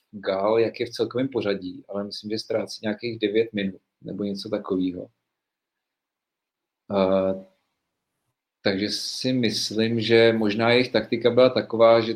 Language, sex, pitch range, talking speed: Czech, male, 100-110 Hz, 135 wpm